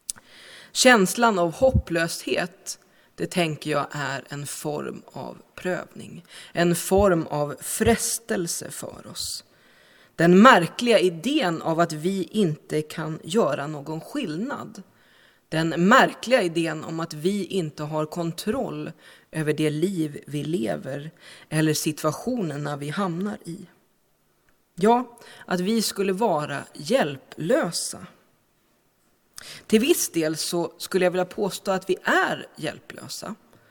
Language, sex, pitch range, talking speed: Swedish, female, 155-200 Hz, 115 wpm